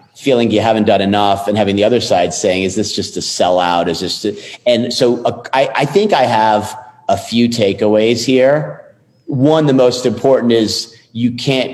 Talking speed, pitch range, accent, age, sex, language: 195 wpm, 100-120 Hz, American, 40-59, male, English